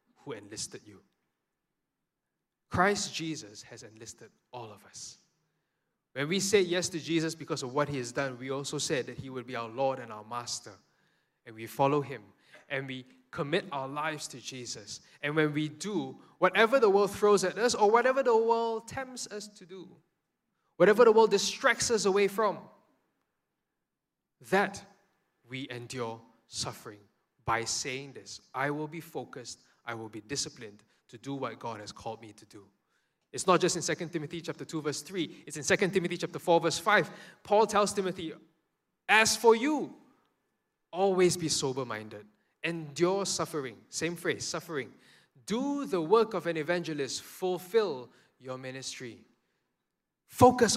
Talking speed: 160 wpm